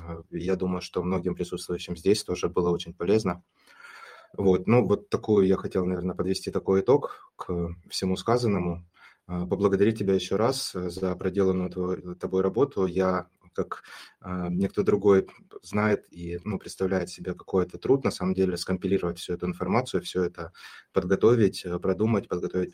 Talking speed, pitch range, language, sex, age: 150 wpm, 90-100 Hz, Russian, male, 20-39